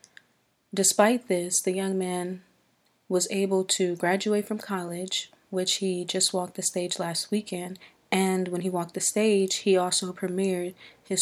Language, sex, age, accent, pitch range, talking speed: English, female, 20-39, American, 180-200 Hz, 155 wpm